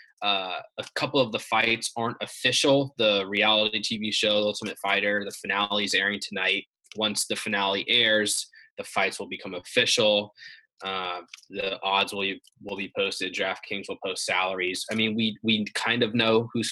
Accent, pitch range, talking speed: American, 100-115 Hz, 170 wpm